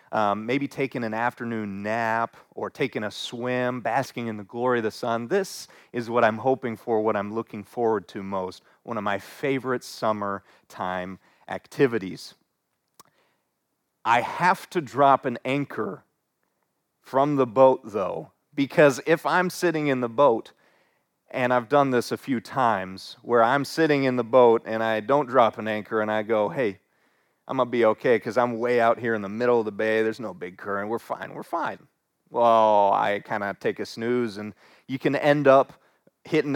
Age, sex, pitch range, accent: 40-59, male, 110-135 Hz, American